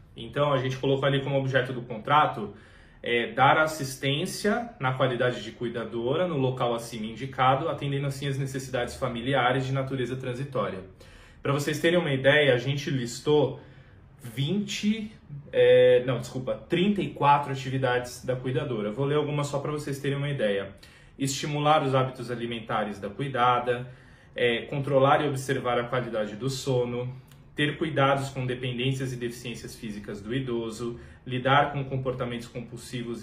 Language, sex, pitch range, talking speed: Portuguese, male, 125-145 Hz, 145 wpm